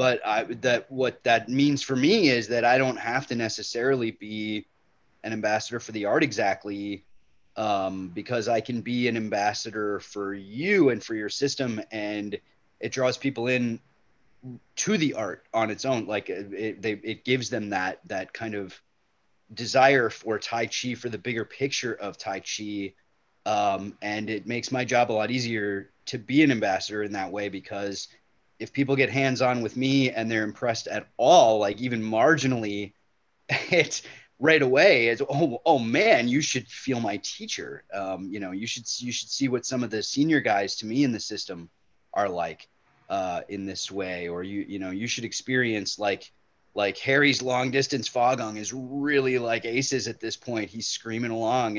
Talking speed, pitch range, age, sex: 185 wpm, 105-130 Hz, 30-49, male